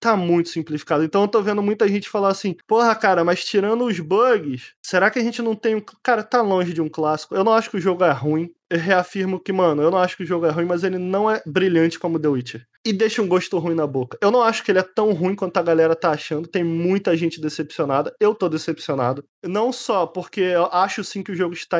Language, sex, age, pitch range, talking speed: Portuguese, male, 20-39, 165-210 Hz, 260 wpm